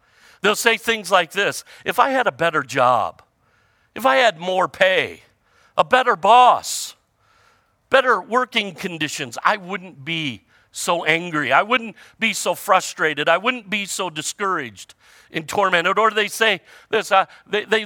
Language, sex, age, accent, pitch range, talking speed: English, male, 50-69, American, 160-210 Hz, 155 wpm